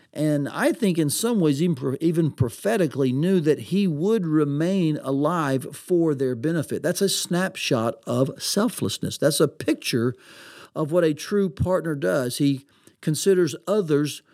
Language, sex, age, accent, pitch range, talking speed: English, male, 50-69, American, 140-180 Hz, 140 wpm